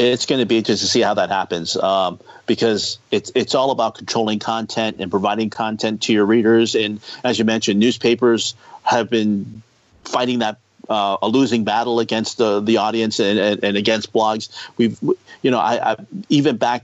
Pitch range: 110-145 Hz